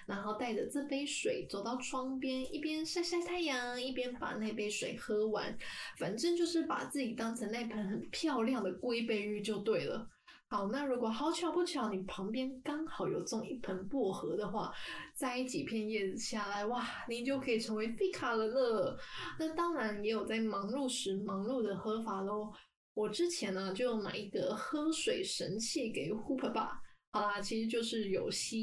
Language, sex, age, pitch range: Chinese, female, 10-29, 215-300 Hz